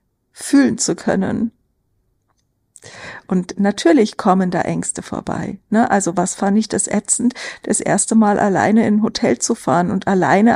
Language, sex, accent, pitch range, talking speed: German, female, German, 190-230 Hz, 155 wpm